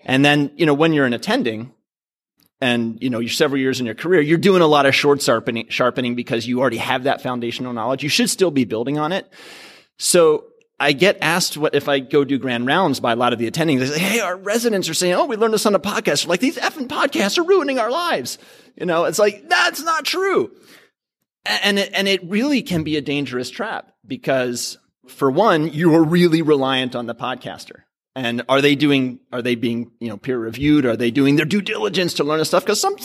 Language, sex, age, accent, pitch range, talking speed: English, male, 30-49, American, 130-185 Hz, 230 wpm